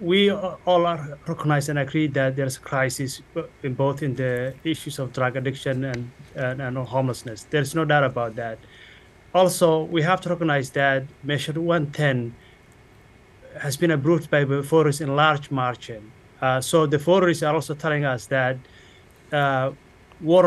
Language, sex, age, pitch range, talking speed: English, male, 30-49, 135-165 Hz, 160 wpm